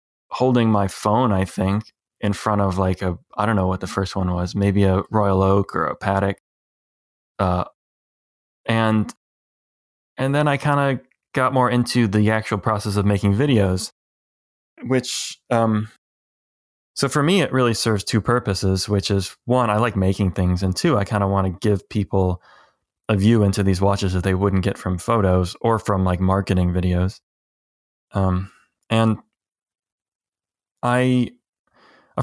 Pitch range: 95-115 Hz